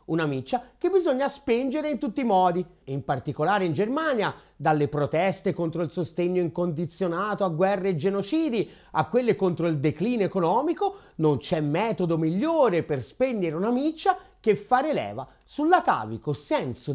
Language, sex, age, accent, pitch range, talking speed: Italian, male, 30-49, native, 175-255 Hz, 150 wpm